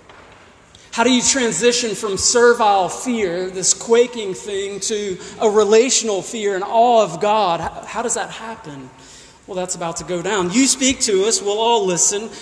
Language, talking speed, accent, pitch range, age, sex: English, 170 wpm, American, 180-230 Hz, 40-59, male